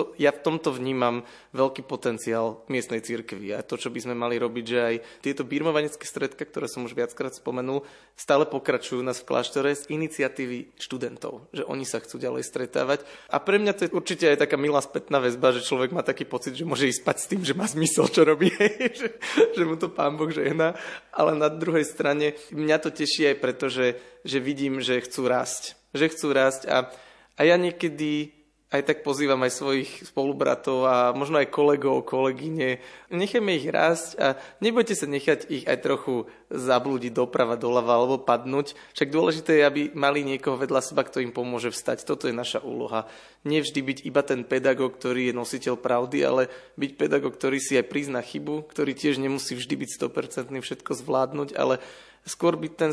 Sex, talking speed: male, 185 wpm